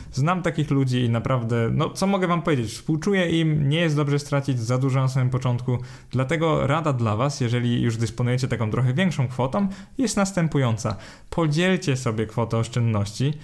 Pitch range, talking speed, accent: 115-155 Hz, 170 wpm, native